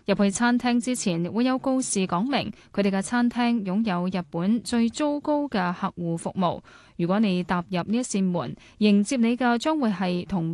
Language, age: Chinese, 10-29